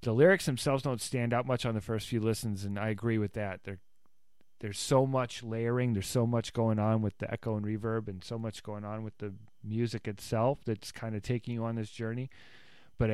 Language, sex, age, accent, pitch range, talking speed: English, male, 30-49, American, 100-125 Hz, 225 wpm